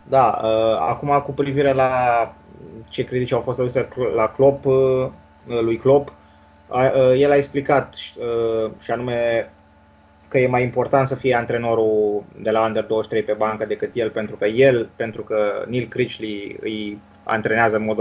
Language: Romanian